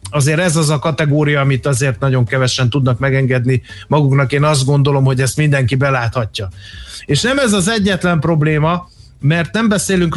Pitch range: 140-160 Hz